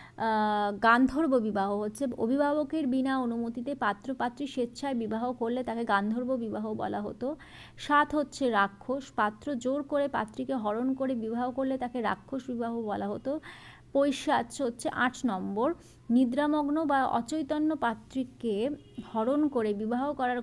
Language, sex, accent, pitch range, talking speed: Bengali, female, native, 235-280 Hz, 130 wpm